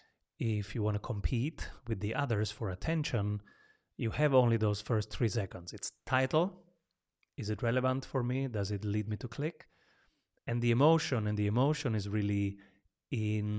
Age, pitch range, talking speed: 30-49, 105-135 Hz, 170 wpm